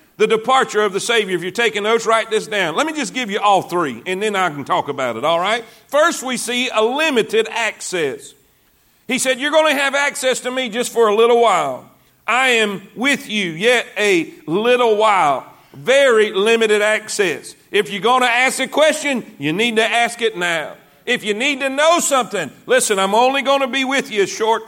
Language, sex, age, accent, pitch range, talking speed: English, male, 50-69, American, 220-280 Hz, 215 wpm